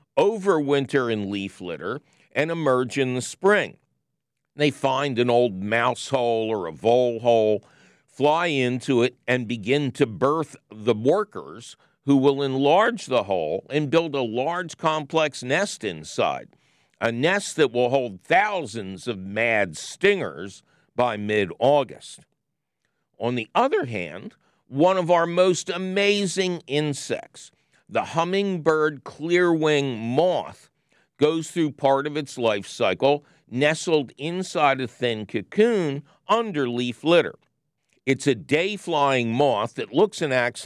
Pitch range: 120-165 Hz